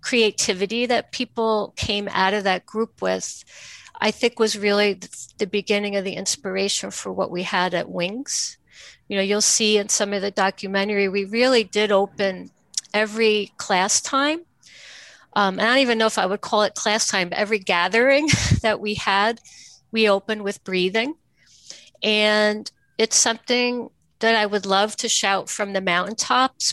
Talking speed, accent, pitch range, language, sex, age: 165 wpm, American, 200-230 Hz, English, female, 50-69